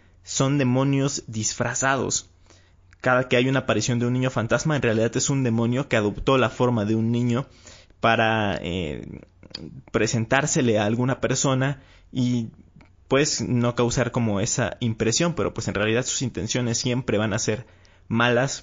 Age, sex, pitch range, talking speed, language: 20-39, male, 105-130 Hz, 155 wpm, Spanish